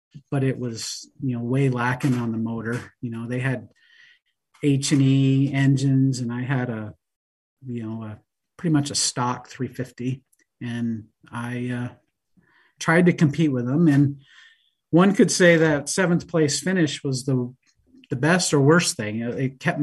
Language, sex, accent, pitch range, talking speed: English, male, American, 125-150 Hz, 165 wpm